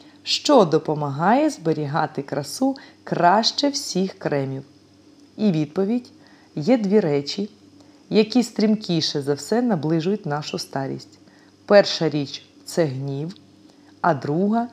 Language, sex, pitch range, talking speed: Ukrainian, female, 145-215 Hz, 110 wpm